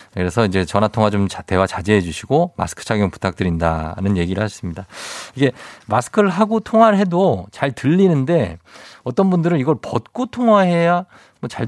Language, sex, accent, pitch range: Korean, male, native, 100-150 Hz